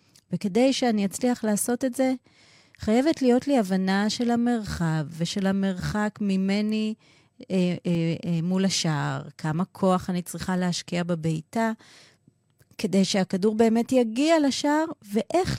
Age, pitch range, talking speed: 30-49, 160-235 Hz, 125 wpm